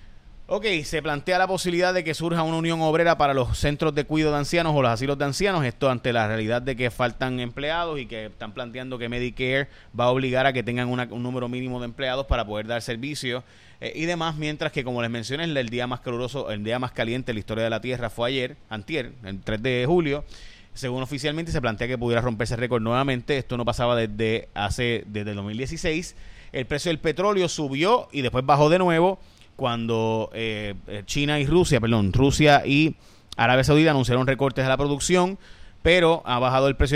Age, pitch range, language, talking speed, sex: 30-49, 115-145 Hz, Spanish, 210 wpm, male